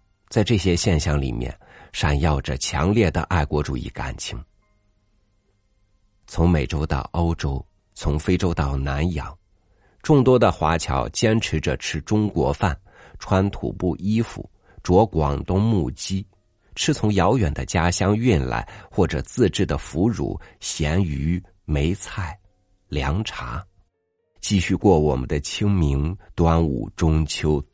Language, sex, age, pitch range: Chinese, male, 50-69, 75-105 Hz